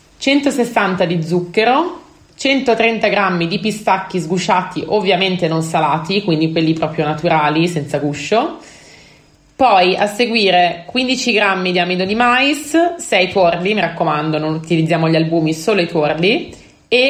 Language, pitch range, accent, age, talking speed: Italian, 155-215 Hz, native, 30-49, 135 wpm